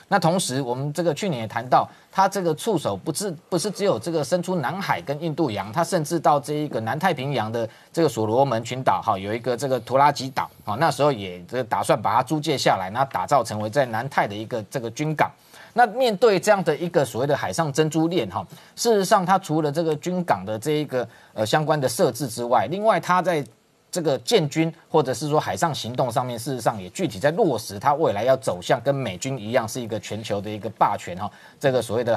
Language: Chinese